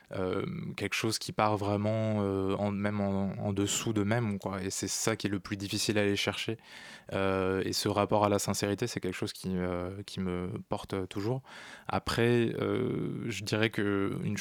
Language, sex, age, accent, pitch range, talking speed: French, male, 20-39, French, 95-110 Hz, 195 wpm